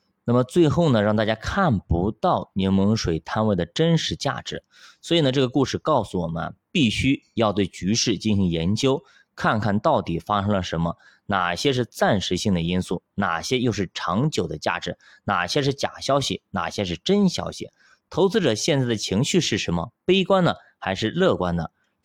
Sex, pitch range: male, 95-135 Hz